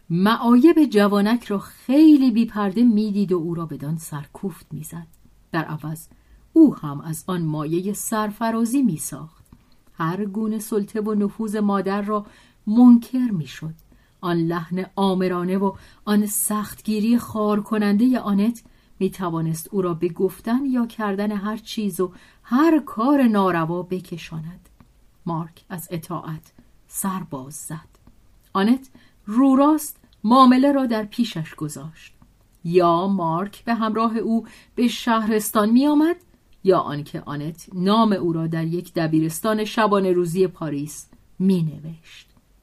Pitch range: 165-225 Hz